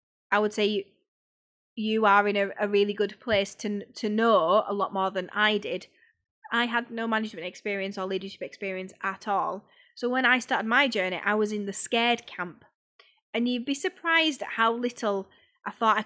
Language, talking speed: English, 190 wpm